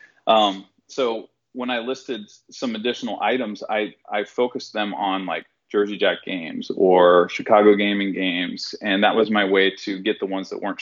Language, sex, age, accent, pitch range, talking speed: English, male, 30-49, American, 100-125 Hz, 175 wpm